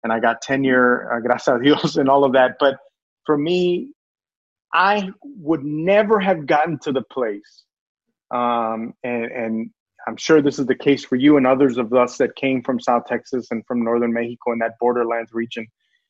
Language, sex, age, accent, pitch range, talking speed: English, male, 30-49, American, 125-155 Hz, 180 wpm